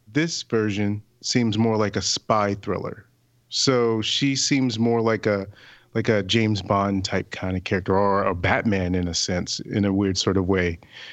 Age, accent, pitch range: 30-49, American, 100-115 Hz